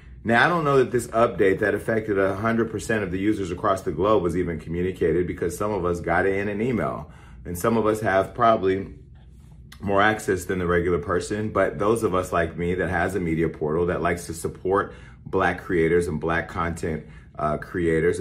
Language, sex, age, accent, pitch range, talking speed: English, male, 30-49, American, 80-100 Hz, 205 wpm